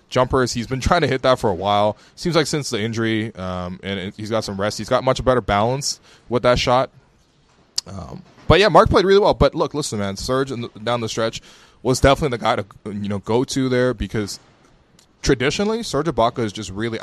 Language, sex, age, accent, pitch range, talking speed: English, male, 20-39, American, 105-135 Hz, 215 wpm